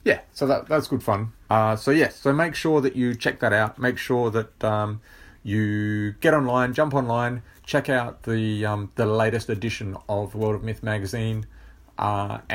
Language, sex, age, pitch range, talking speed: English, male, 30-49, 100-120 Hz, 190 wpm